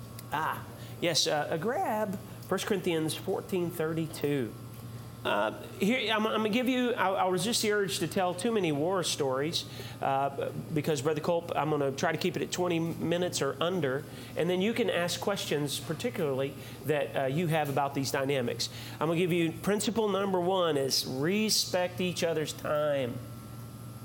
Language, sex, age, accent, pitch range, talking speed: English, male, 40-59, American, 130-175 Hz, 175 wpm